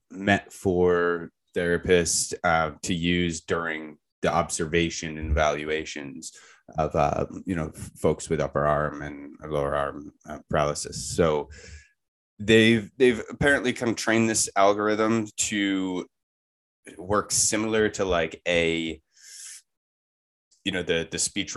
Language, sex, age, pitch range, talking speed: English, male, 20-39, 80-100 Hz, 120 wpm